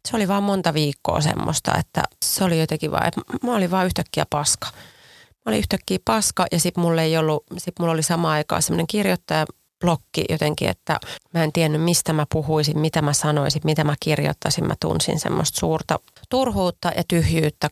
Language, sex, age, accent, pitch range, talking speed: Finnish, female, 30-49, native, 155-180 Hz, 185 wpm